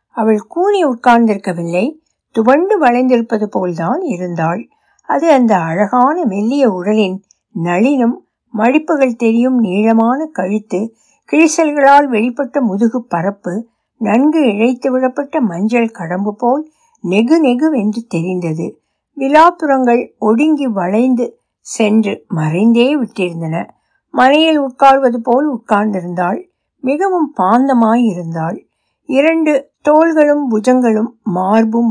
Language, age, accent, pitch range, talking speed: Tamil, 60-79, native, 210-280 Hz, 85 wpm